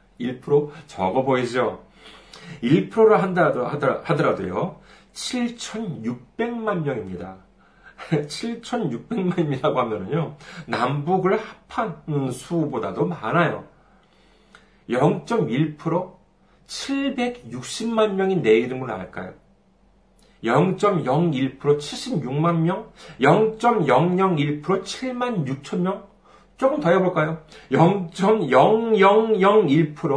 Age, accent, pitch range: 40-59, native, 145-215 Hz